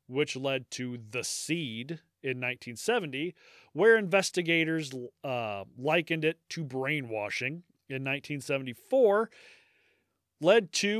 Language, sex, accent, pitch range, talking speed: English, male, American, 130-175 Hz, 85 wpm